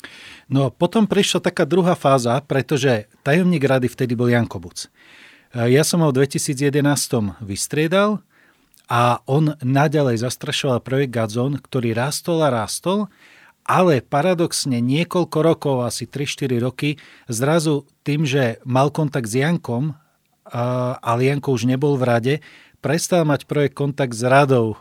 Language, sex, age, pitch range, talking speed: Slovak, male, 30-49, 120-155 Hz, 135 wpm